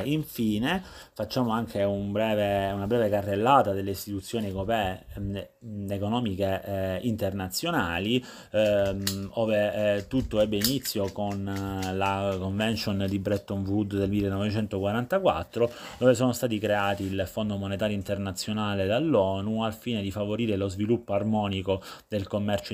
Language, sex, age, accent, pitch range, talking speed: Italian, male, 30-49, native, 95-110 Hz, 125 wpm